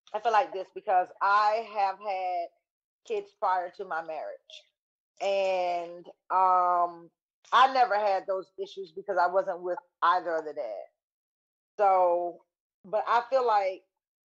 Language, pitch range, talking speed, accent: English, 185-245 Hz, 140 wpm, American